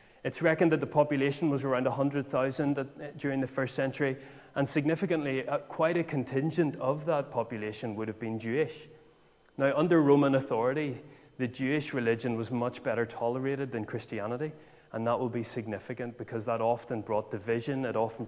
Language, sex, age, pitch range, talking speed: English, male, 30-49, 115-140 Hz, 160 wpm